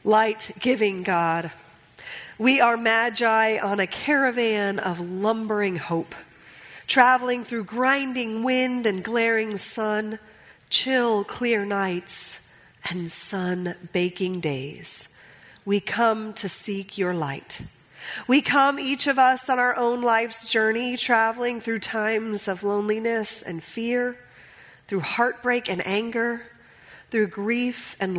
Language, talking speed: English, 120 wpm